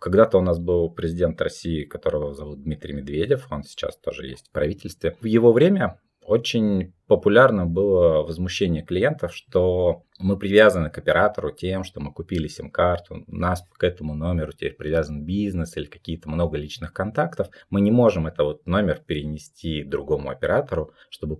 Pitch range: 75-110 Hz